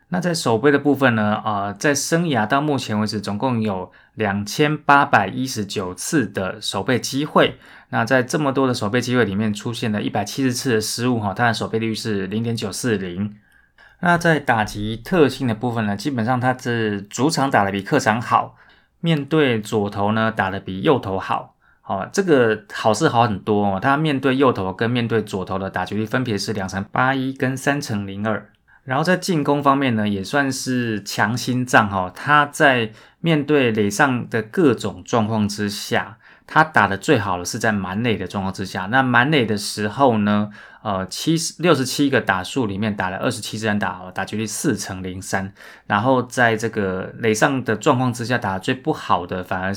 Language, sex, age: Chinese, male, 20-39